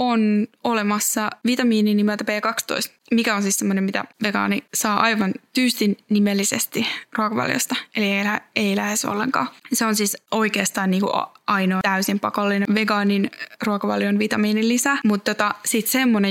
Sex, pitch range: female, 205-230 Hz